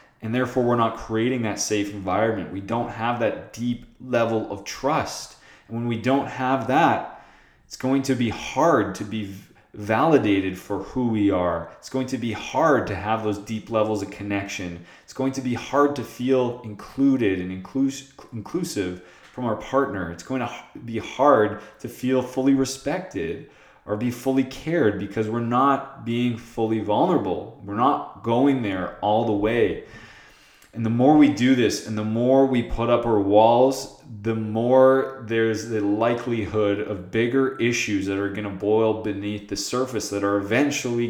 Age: 20-39